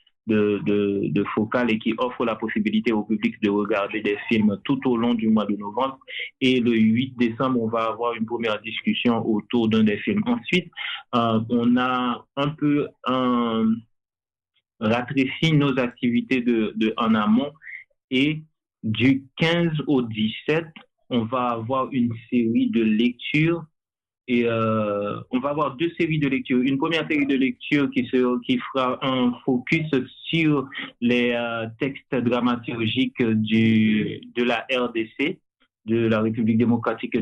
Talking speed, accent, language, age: 150 wpm, French, French, 30-49